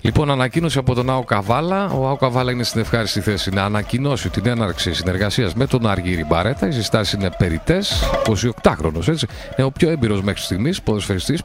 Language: Greek